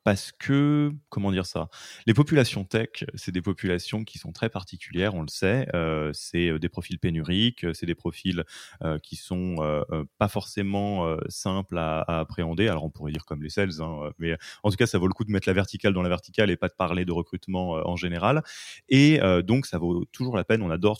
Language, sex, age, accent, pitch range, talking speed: French, male, 20-39, French, 90-115 Hz, 225 wpm